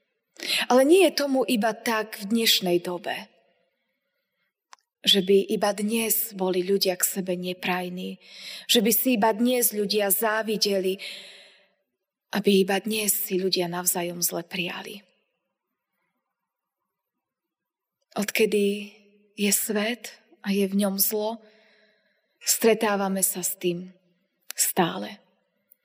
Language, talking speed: Slovak, 105 wpm